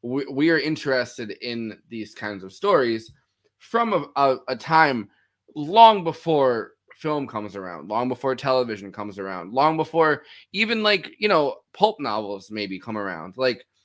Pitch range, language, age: 115-155 Hz, English, 20-39